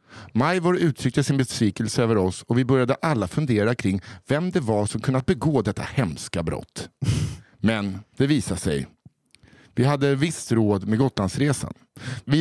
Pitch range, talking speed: 115-155 Hz, 155 wpm